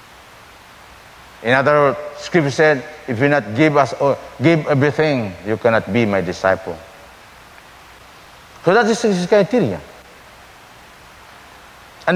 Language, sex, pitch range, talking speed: English, male, 130-185 Hz, 120 wpm